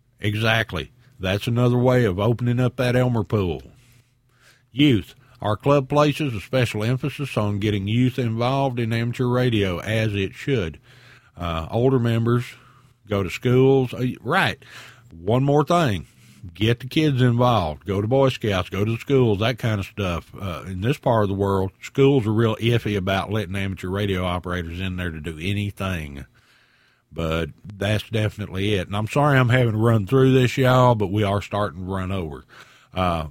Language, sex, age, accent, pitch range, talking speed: English, male, 50-69, American, 100-130 Hz, 175 wpm